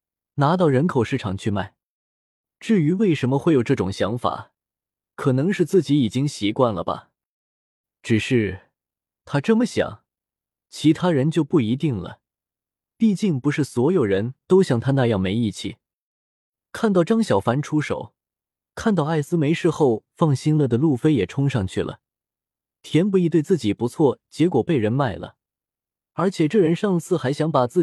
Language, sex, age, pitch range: Chinese, male, 20-39, 115-175 Hz